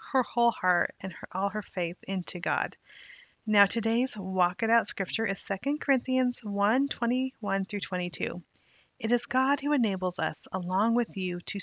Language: English